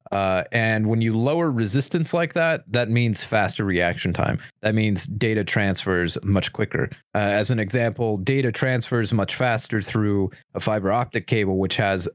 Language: English